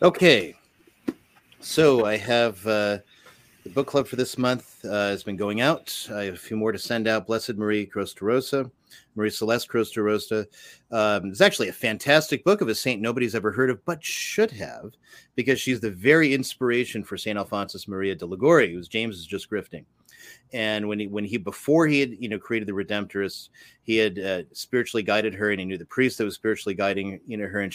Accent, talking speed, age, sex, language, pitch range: American, 205 wpm, 30-49, male, English, 100-120 Hz